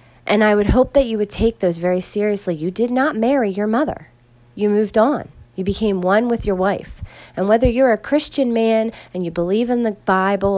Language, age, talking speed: English, 40-59, 215 wpm